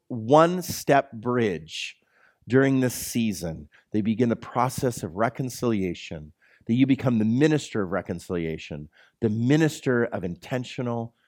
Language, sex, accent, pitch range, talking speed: English, male, American, 95-125 Hz, 115 wpm